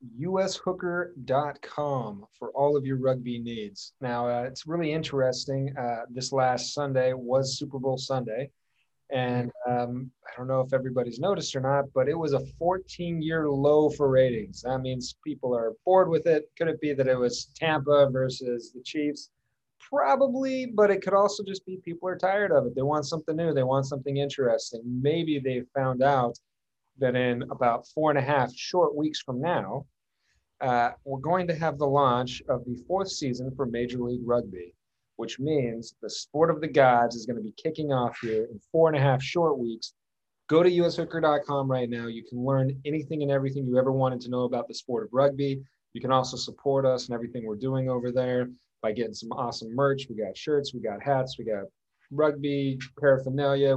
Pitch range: 125-150 Hz